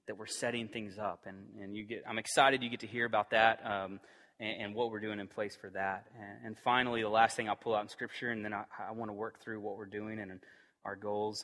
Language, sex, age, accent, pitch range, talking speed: English, male, 30-49, American, 105-130 Hz, 280 wpm